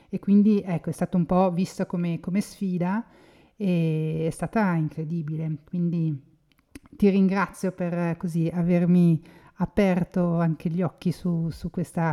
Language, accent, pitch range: Italian, native, 165-185 Hz